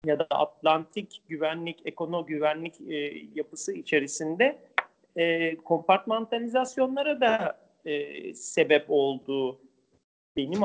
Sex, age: male, 40-59